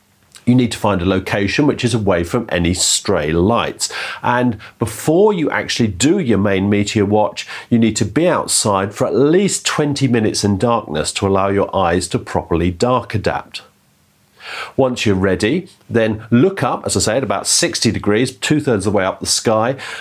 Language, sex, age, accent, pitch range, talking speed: English, male, 40-59, British, 95-115 Hz, 185 wpm